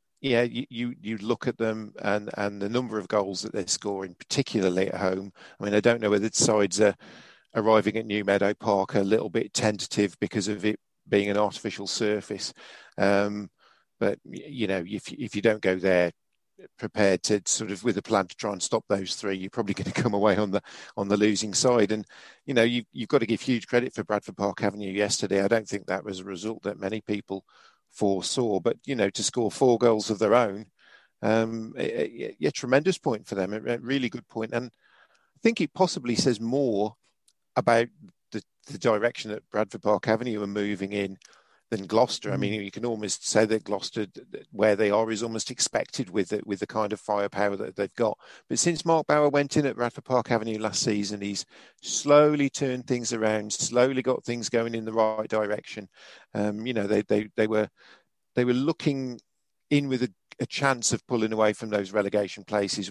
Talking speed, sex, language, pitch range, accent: 205 wpm, male, English, 100-120 Hz, British